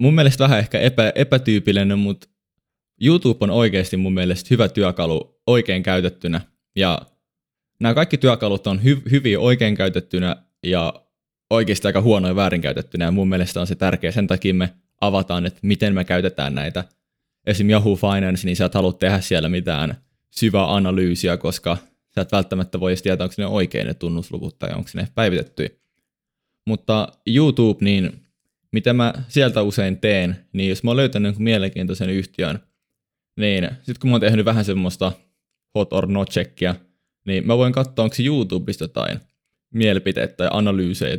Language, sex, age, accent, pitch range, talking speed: Finnish, male, 20-39, native, 90-110 Hz, 160 wpm